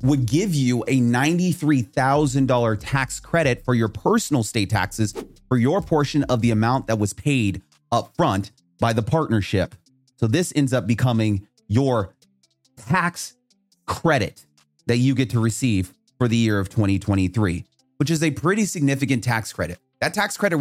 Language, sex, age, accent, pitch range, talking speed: English, male, 30-49, American, 110-145 Hz, 155 wpm